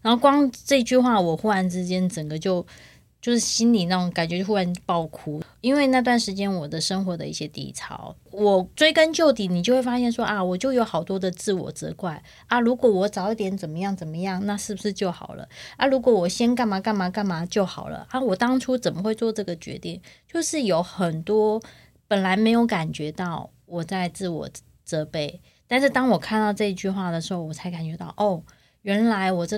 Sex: female